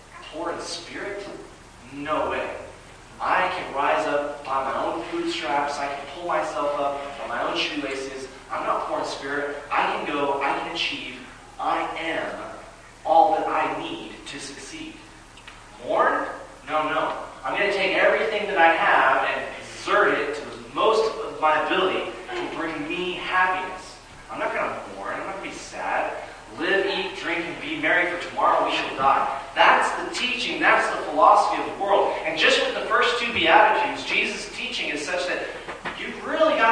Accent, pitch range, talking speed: American, 155-240 Hz, 165 wpm